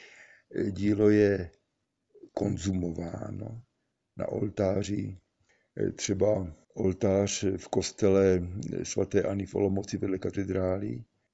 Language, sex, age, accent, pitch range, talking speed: Czech, male, 50-69, native, 95-105 Hz, 80 wpm